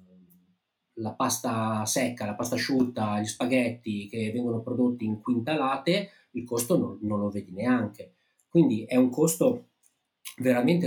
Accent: native